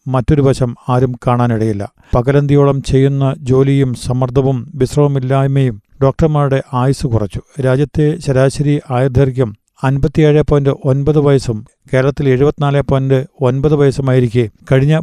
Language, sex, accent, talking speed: Malayalam, male, native, 75 wpm